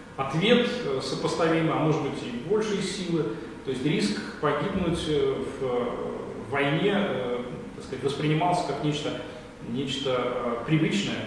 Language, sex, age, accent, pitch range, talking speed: Russian, male, 30-49, native, 130-165 Hz, 110 wpm